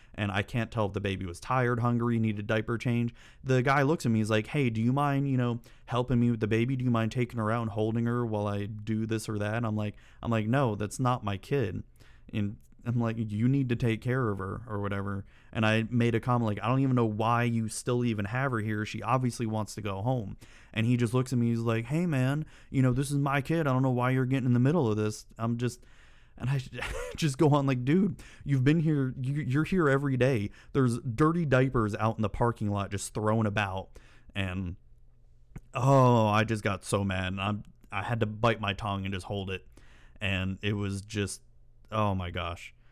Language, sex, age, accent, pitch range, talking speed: English, male, 30-49, American, 100-125 Hz, 240 wpm